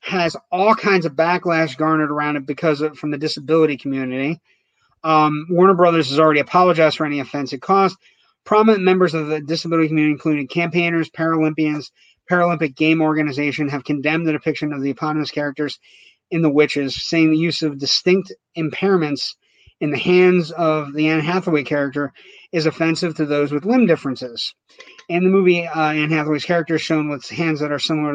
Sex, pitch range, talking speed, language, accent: male, 150-175 Hz, 175 wpm, English, American